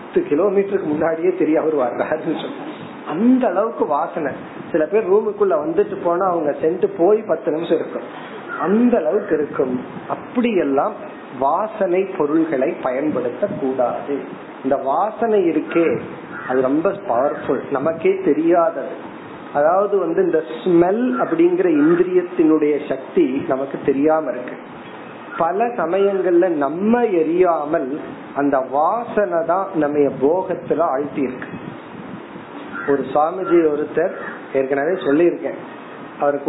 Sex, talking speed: male, 90 wpm